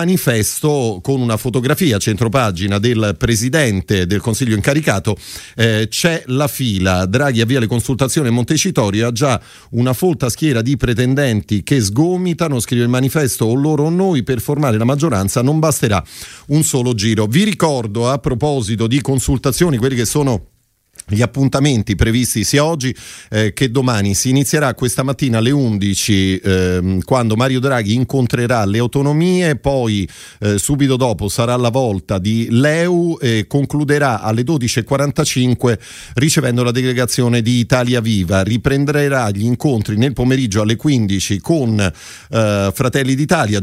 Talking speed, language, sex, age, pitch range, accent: 145 wpm, Italian, male, 40-59, 110-140 Hz, native